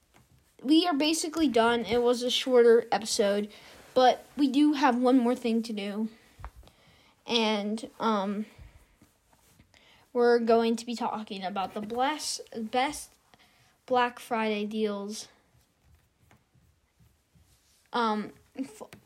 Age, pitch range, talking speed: 10-29, 225-265 Hz, 100 wpm